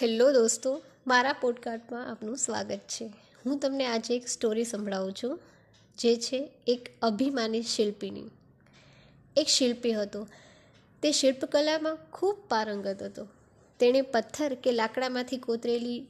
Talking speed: 115 wpm